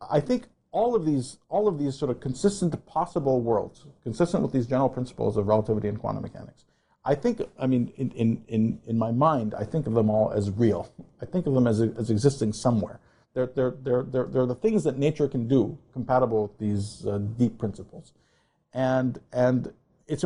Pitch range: 110-145 Hz